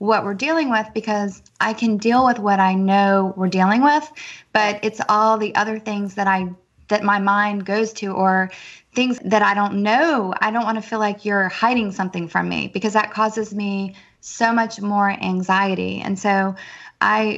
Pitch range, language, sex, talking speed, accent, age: 195-230 Hz, English, female, 195 wpm, American, 20-39